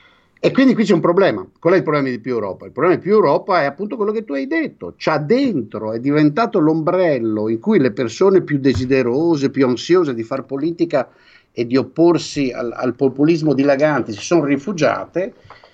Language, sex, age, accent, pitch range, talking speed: Italian, male, 50-69, native, 110-160 Hz, 195 wpm